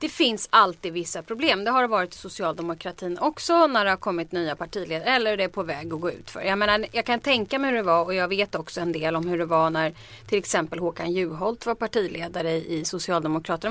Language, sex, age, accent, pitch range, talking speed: Swedish, female, 30-49, native, 170-240 Hz, 240 wpm